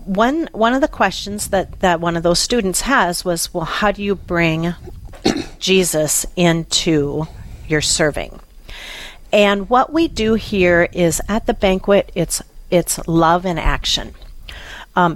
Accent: American